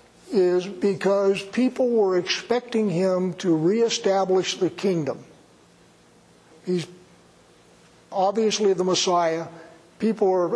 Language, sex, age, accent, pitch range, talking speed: English, male, 60-79, American, 170-200 Hz, 90 wpm